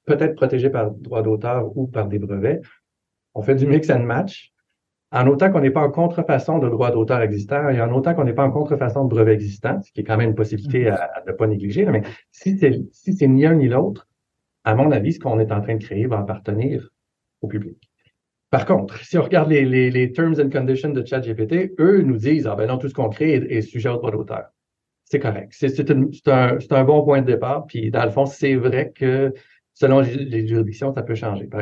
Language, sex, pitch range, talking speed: French, male, 110-140 Hz, 245 wpm